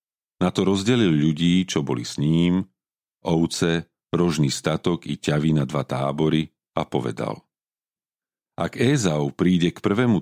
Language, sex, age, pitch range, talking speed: Slovak, male, 40-59, 75-100 Hz, 135 wpm